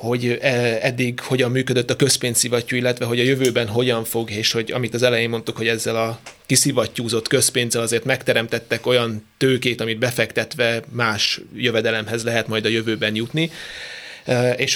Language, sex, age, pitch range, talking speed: Hungarian, male, 30-49, 115-130 Hz, 150 wpm